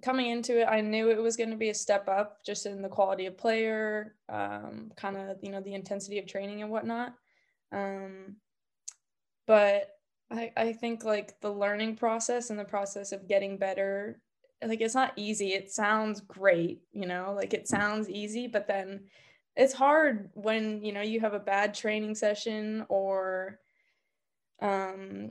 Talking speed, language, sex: 175 wpm, English, female